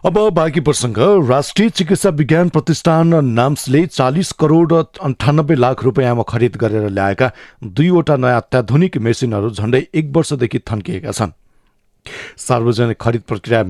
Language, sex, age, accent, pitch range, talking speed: English, male, 60-79, Indian, 115-140 Hz, 160 wpm